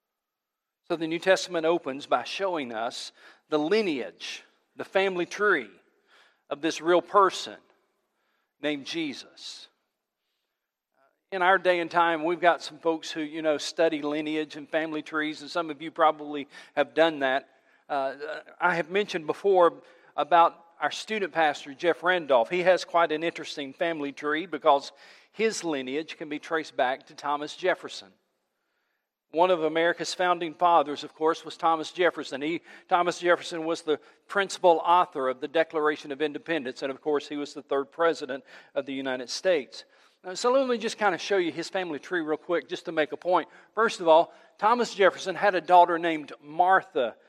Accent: American